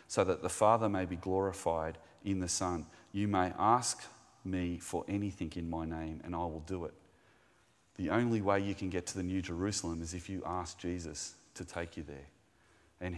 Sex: male